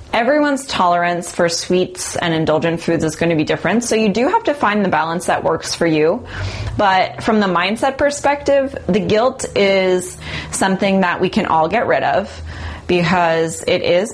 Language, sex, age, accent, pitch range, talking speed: English, female, 20-39, American, 155-185 Hz, 185 wpm